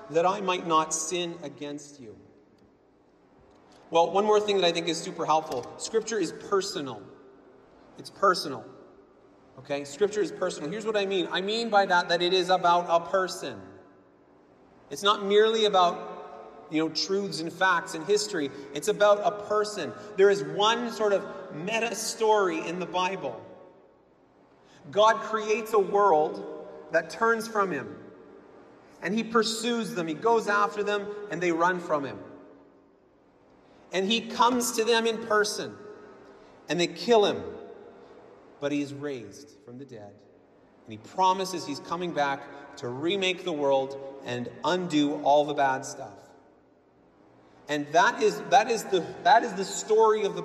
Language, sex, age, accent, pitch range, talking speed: English, male, 30-49, American, 155-215 Hz, 155 wpm